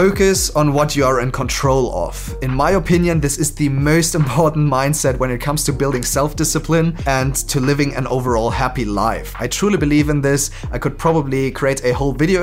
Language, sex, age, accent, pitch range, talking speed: Malayalam, male, 30-49, German, 125-155 Hz, 205 wpm